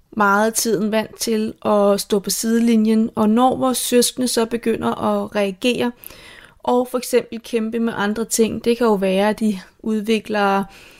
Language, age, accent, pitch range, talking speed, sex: Danish, 30-49, native, 210-235 Hz, 165 wpm, female